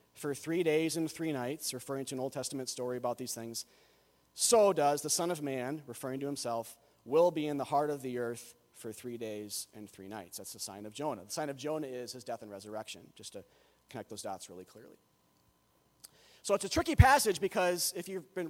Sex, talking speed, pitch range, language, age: male, 220 wpm, 120-175 Hz, English, 30-49